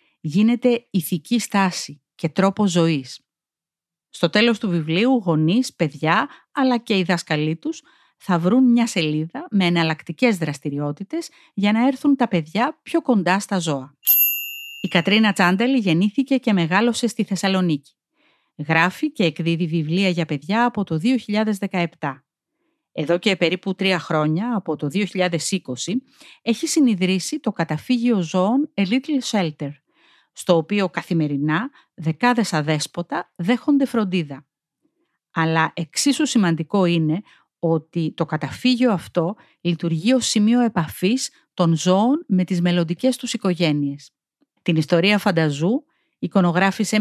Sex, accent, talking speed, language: female, native, 125 wpm, Greek